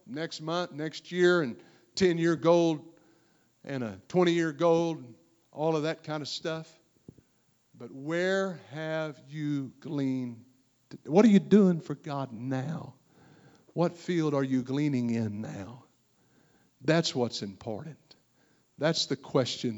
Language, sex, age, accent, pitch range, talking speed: English, male, 60-79, American, 120-155 Hz, 125 wpm